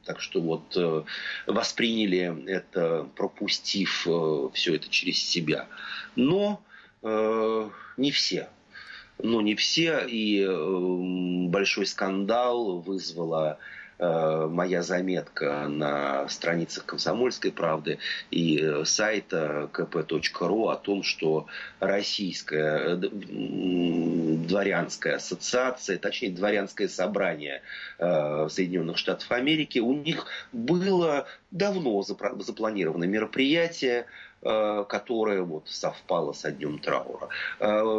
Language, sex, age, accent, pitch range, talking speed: Russian, male, 30-49, native, 85-110 Hz, 85 wpm